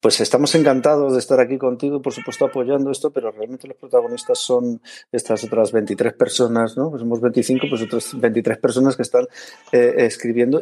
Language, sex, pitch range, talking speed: Spanish, male, 115-135 Hz, 180 wpm